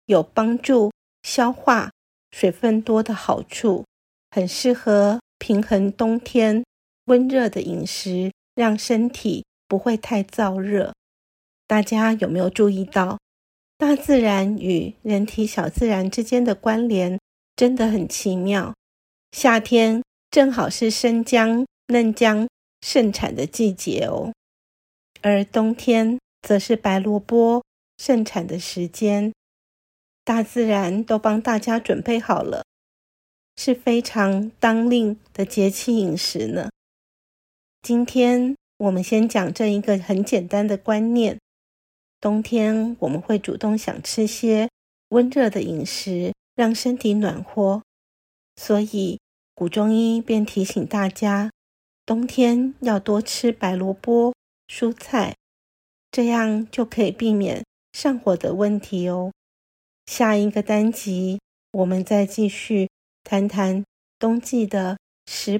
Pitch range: 195-235 Hz